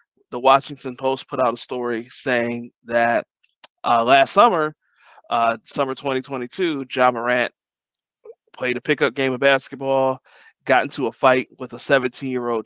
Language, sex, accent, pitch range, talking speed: English, male, American, 125-145 Hz, 140 wpm